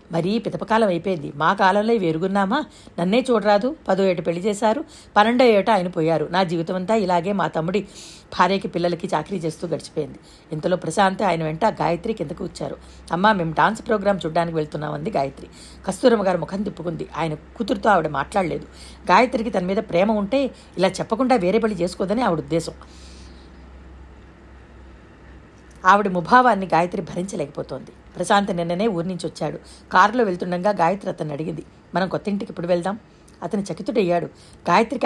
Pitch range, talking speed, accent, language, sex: 165-210 Hz, 140 wpm, native, Telugu, female